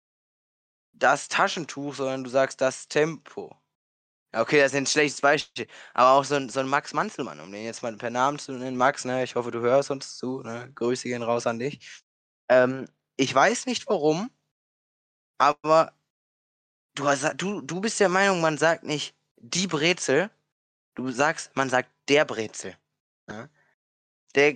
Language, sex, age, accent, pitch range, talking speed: German, male, 20-39, German, 125-170 Hz, 155 wpm